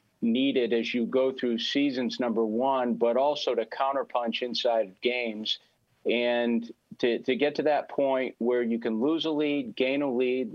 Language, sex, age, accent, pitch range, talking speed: English, male, 40-59, American, 110-130 Hz, 175 wpm